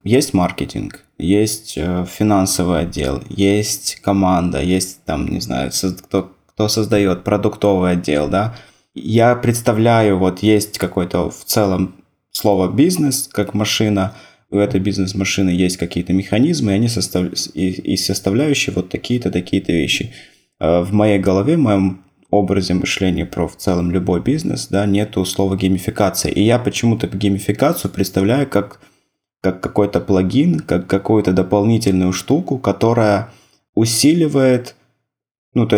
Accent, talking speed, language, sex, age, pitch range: native, 120 wpm, Russian, male, 20-39, 95-110 Hz